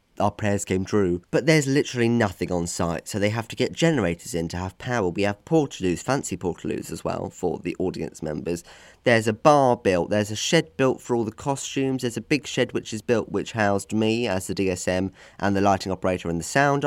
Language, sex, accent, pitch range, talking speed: English, male, British, 100-130 Hz, 225 wpm